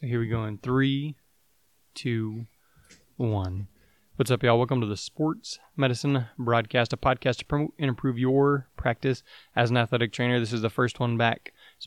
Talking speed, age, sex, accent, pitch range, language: 175 wpm, 20-39, male, American, 115-135 Hz, English